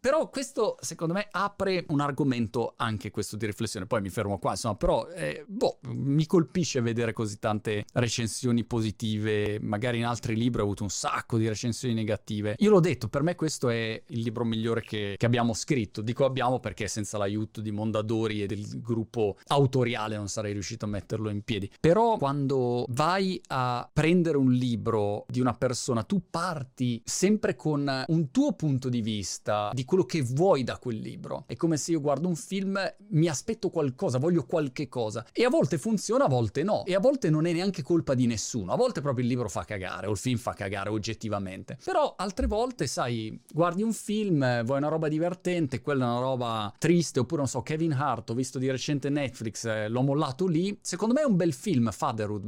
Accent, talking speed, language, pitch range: native, 200 wpm, Italian, 115-160 Hz